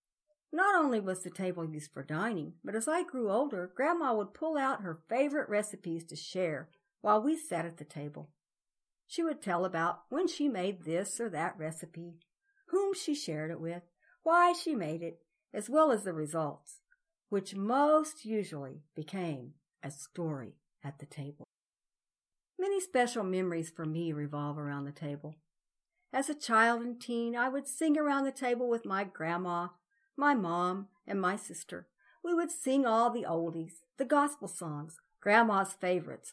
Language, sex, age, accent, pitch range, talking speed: English, female, 60-79, American, 165-250 Hz, 165 wpm